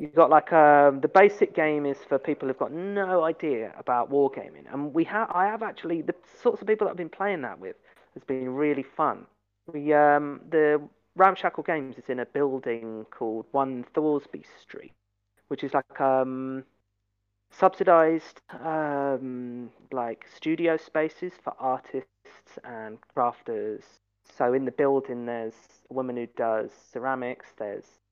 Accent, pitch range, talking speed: British, 120-165 Hz, 155 wpm